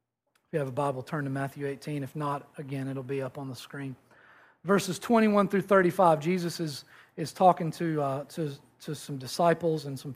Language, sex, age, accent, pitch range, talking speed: English, male, 40-59, American, 150-195 Hz, 200 wpm